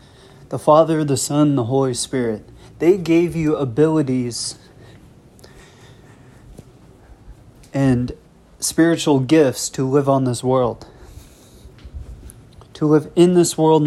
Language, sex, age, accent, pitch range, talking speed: English, male, 30-49, American, 130-160 Hz, 110 wpm